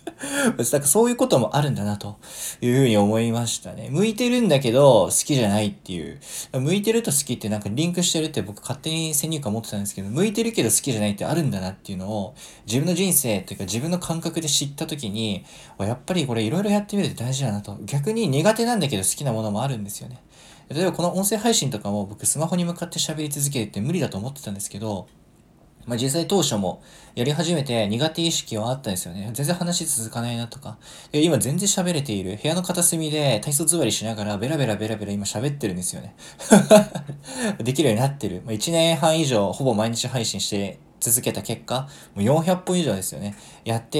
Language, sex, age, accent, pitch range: Japanese, male, 20-39, native, 110-165 Hz